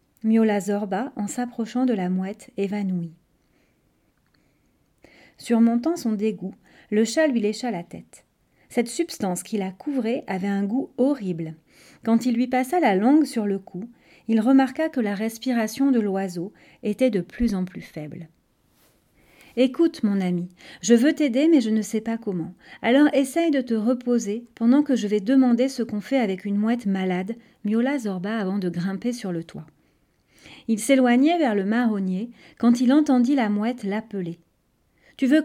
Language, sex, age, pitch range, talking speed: French, female, 40-59, 205-260 Hz, 170 wpm